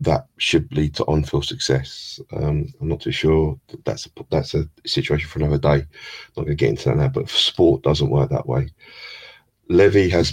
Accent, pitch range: British, 75-85 Hz